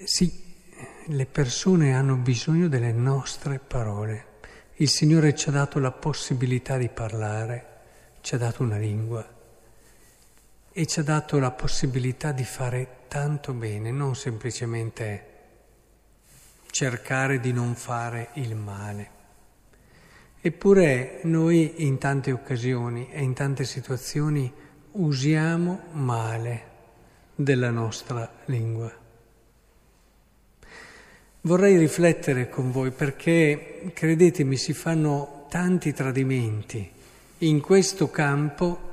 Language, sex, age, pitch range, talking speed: Italian, male, 50-69, 120-160 Hz, 105 wpm